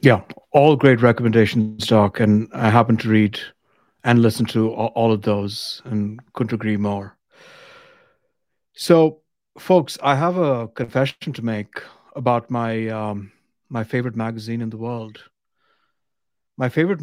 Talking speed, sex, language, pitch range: 135 wpm, male, English, 115-140 Hz